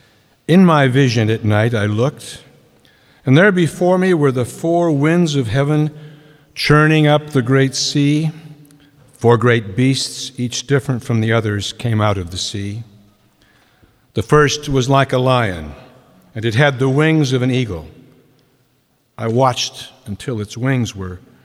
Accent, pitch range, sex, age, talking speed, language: American, 120-150 Hz, male, 60-79, 155 wpm, English